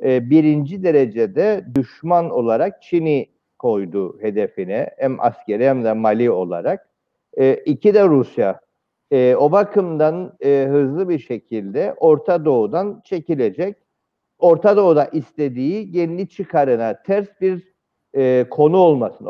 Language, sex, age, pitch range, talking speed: Turkish, male, 50-69, 130-180 Hz, 115 wpm